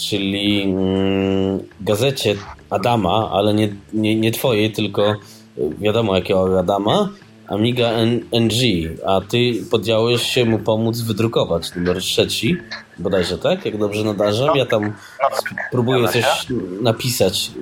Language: Polish